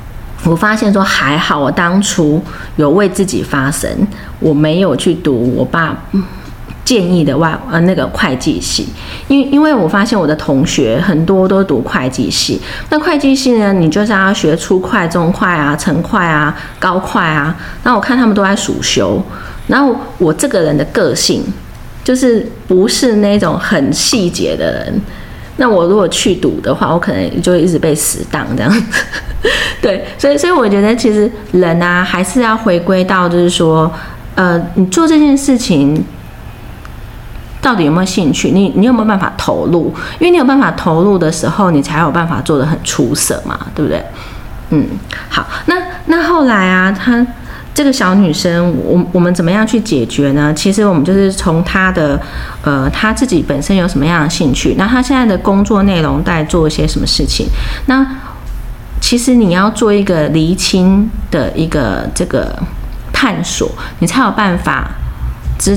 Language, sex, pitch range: Chinese, female, 160-215 Hz